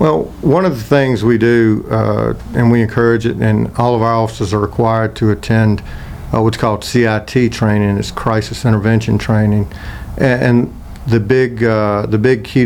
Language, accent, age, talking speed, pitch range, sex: English, American, 50-69, 180 wpm, 105-120 Hz, male